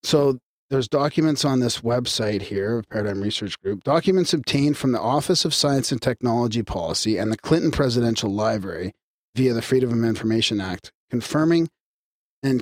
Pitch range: 110-140 Hz